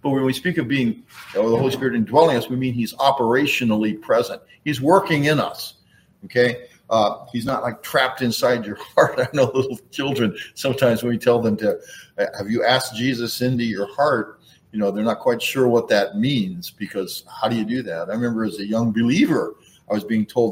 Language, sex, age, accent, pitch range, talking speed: English, male, 50-69, American, 115-155 Hz, 205 wpm